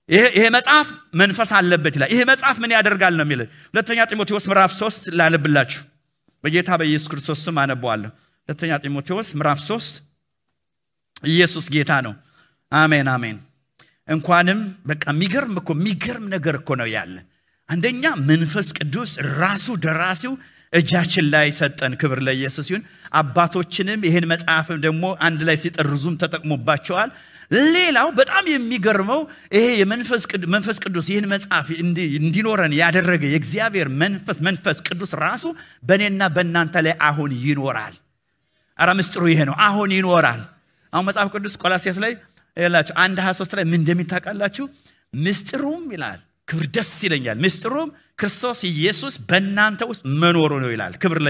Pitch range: 155-205 Hz